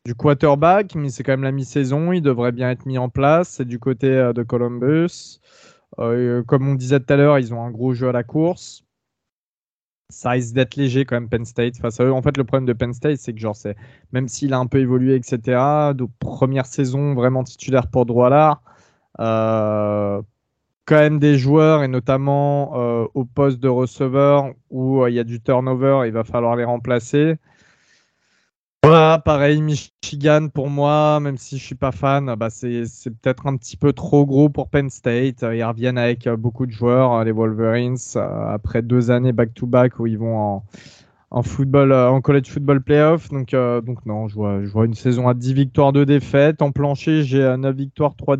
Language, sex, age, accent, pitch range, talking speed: French, male, 20-39, French, 120-140 Hz, 195 wpm